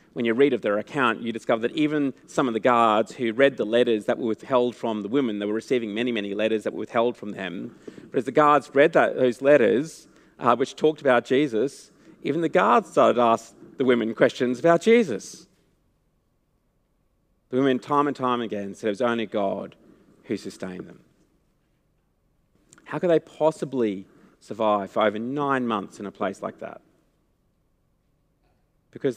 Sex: male